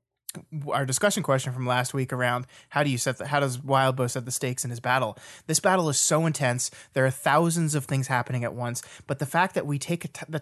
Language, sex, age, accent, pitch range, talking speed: English, male, 20-39, American, 130-155 Hz, 235 wpm